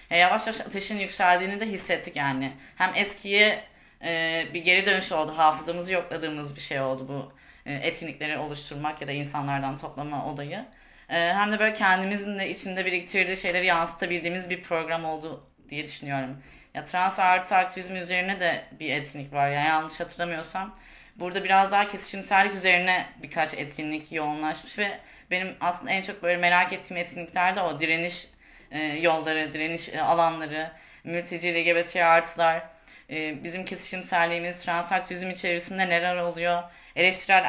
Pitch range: 160-190 Hz